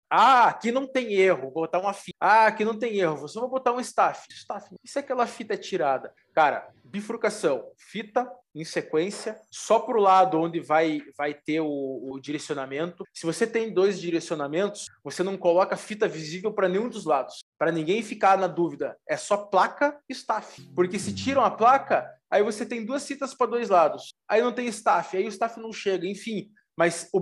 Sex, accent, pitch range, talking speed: male, Brazilian, 160-220 Hz, 200 wpm